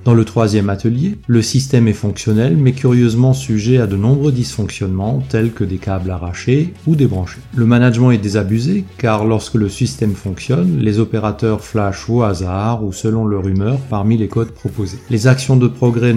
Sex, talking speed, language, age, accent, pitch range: male, 180 wpm, French, 30-49, French, 100-125 Hz